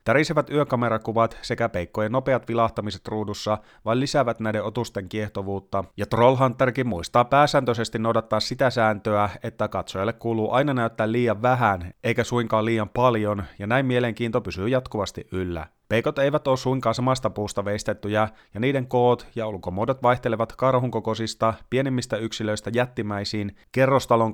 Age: 30-49